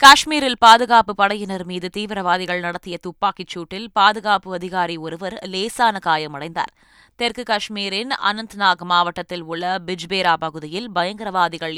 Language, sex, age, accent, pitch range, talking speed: Tamil, female, 20-39, native, 165-210 Hz, 100 wpm